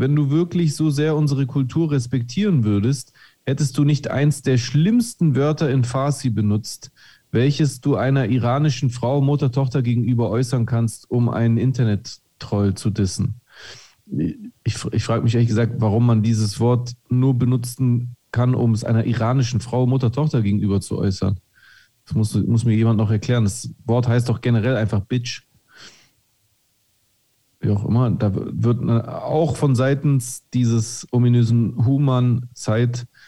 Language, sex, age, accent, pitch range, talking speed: German, male, 40-59, German, 110-135 Hz, 150 wpm